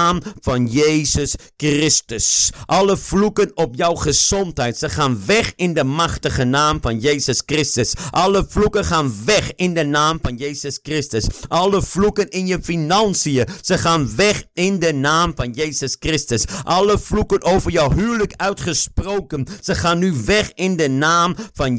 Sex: male